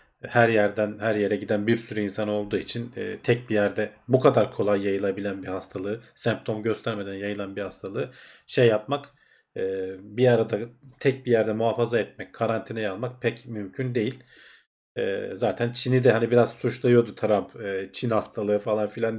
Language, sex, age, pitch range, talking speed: Turkish, male, 40-59, 105-130 Hz, 165 wpm